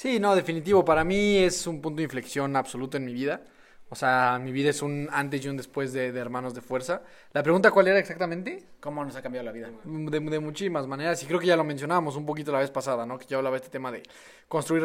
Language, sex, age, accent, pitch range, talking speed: Spanish, male, 20-39, Mexican, 130-155 Hz, 260 wpm